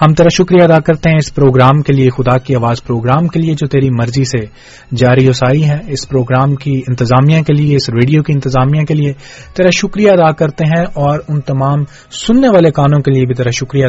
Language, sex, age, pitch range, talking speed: English, male, 30-49, 130-150 Hz, 220 wpm